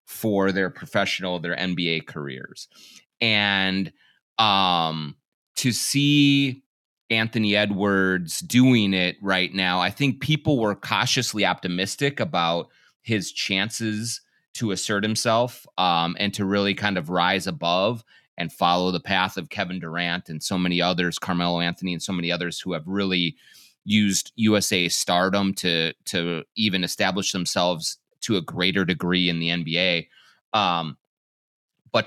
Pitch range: 90-110 Hz